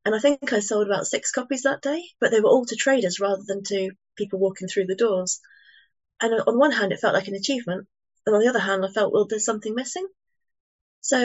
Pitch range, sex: 195-240 Hz, female